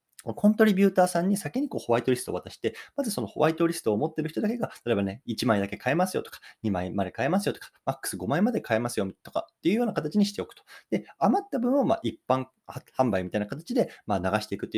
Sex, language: male, Japanese